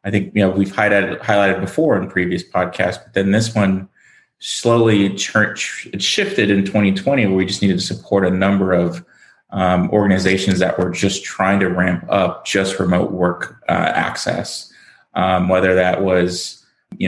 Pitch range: 90-100 Hz